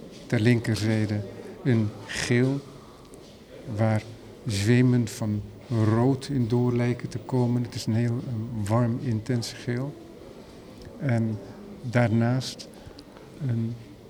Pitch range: 110-125 Hz